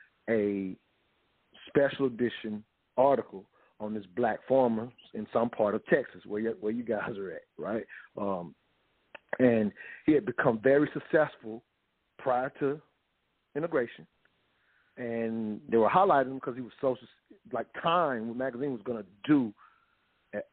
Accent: American